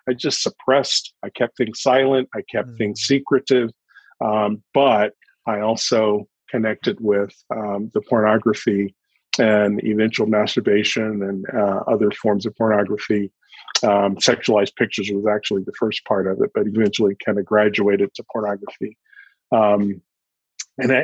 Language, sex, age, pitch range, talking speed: English, male, 40-59, 105-125 Hz, 135 wpm